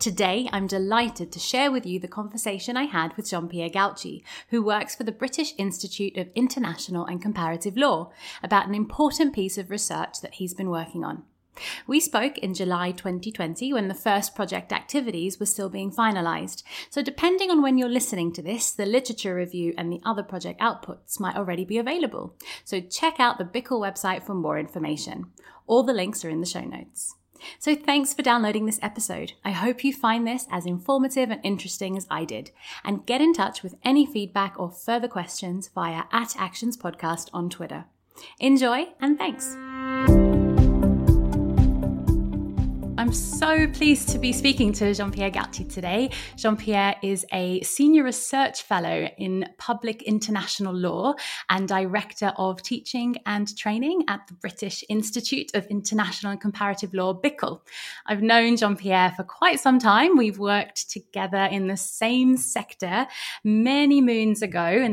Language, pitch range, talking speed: English, 185-245 Hz, 165 wpm